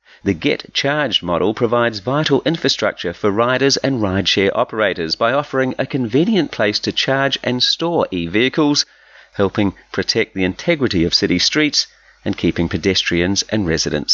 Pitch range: 100-145 Hz